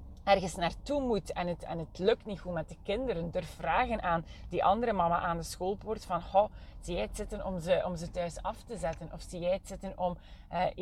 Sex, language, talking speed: female, Dutch, 225 wpm